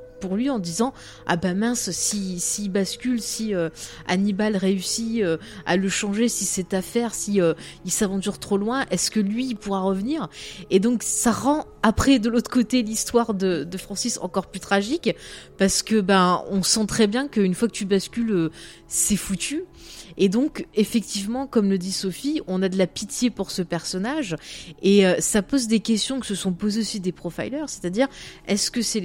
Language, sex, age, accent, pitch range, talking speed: French, female, 20-39, French, 180-230 Hz, 195 wpm